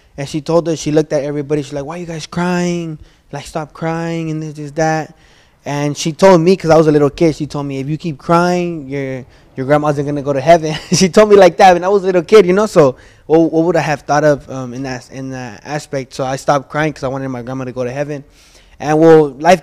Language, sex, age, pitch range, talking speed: English, male, 20-39, 130-160 Hz, 275 wpm